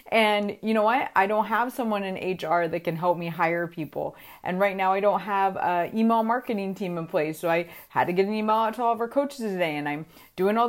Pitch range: 165-215 Hz